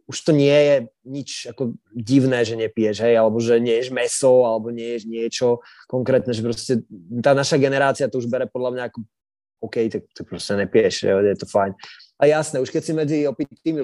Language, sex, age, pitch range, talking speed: Slovak, male, 20-39, 120-140 Hz, 195 wpm